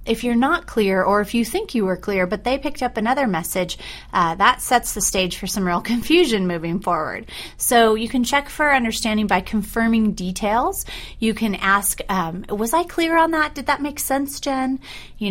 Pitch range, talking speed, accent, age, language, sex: 185-235 Hz, 205 wpm, American, 30-49, English, female